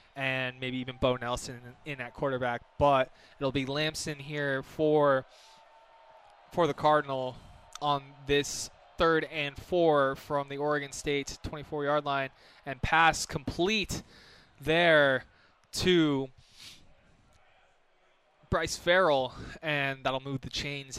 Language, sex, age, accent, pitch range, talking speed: English, male, 20-39, American, 120-145 Hz, 115 wpm